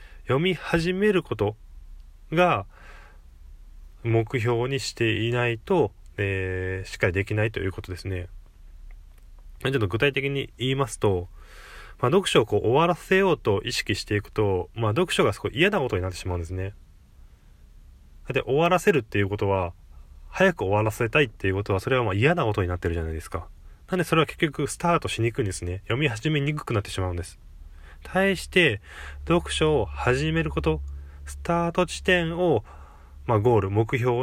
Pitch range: 85-140 Hz